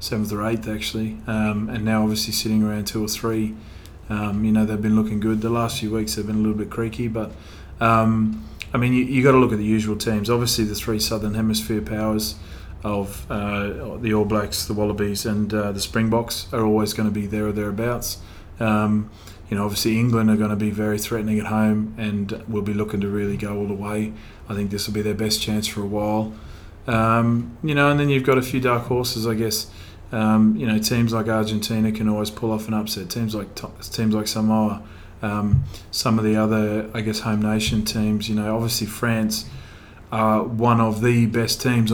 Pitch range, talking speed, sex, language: 105-110 Hz, 215 wpm, male, English